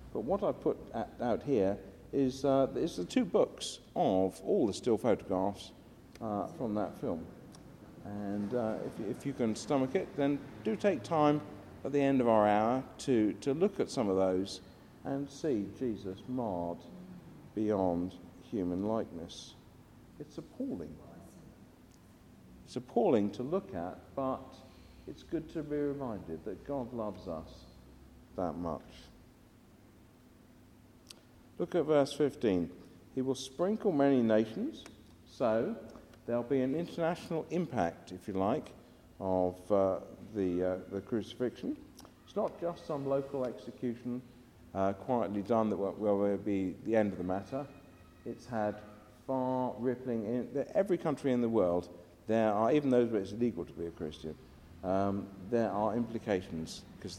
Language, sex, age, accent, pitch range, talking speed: English, male, 50-69, British, 95-130 Hz, 145 wpm